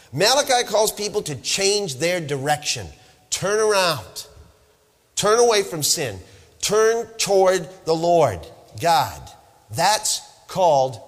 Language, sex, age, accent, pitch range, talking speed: English, male, 40-59, American, 125-195 Hz, 110 wpm